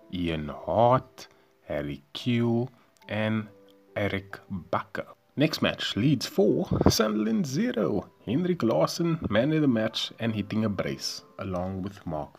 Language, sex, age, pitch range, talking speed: English, male, 30-49, 85-120 Hz, 120 wpm